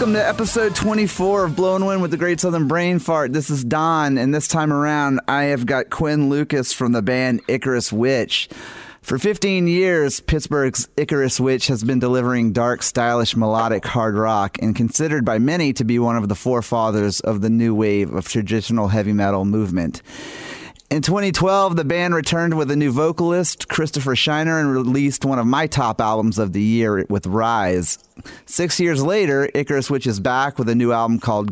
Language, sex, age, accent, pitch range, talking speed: English, male, 30-49, American, 115-155 Hz, 185 wpm